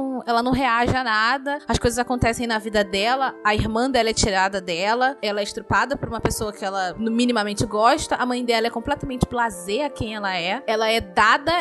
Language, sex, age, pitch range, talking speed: Portuguese, female, 20-39, 220-285 Hz, 205 wpm